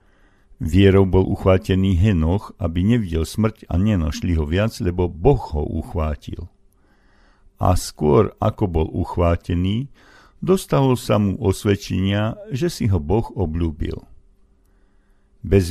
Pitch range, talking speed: 85-105 Hz, 115 wpm